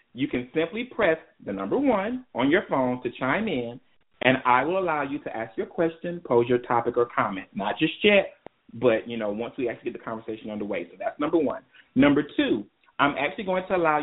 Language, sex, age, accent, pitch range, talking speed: English, male, 30-49, American, 120-160 Hz, 220 wpm